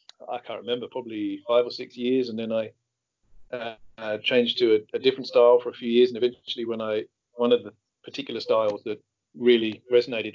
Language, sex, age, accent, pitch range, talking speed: English, male, 40-59, British, 115-140 Hz, 195 wpm